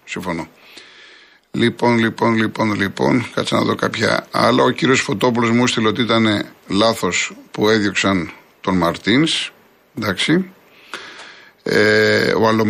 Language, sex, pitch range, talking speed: Greek, male, 100-120 Hz, 115 wpm